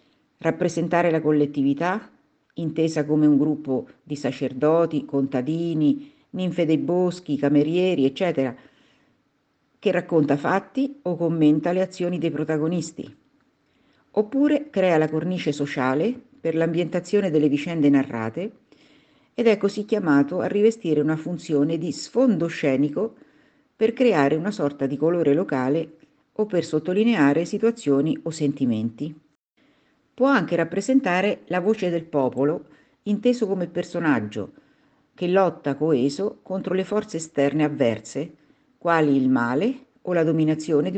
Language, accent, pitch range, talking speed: Italian, native, 150-205 Hz, 120 wpm